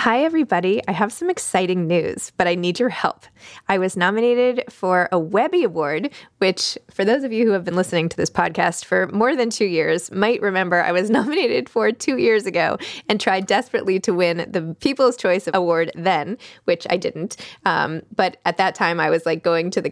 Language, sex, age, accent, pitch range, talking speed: English, female, 20-39, American, 180-240 Hz, 210 wpm